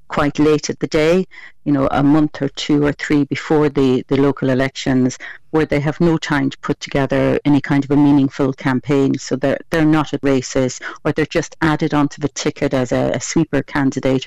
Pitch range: 135-155 Hz